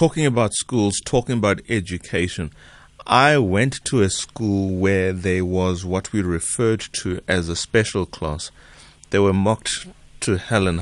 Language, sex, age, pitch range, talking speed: English, male, 30-49, 90-115 Hz, 155 wpm